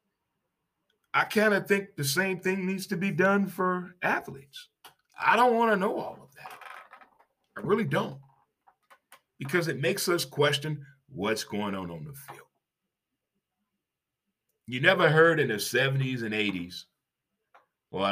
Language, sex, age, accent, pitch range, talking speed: English, male, 40-59, American, 125-180 Hz, 145 wpm